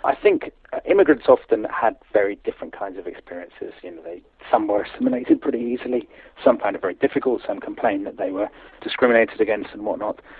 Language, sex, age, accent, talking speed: English, male, 40-59, British, 185 wpm